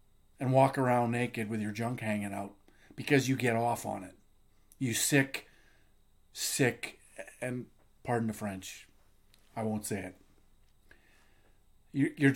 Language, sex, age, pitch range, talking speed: English, male, 50-69, 105-155 Hz, 130 wpm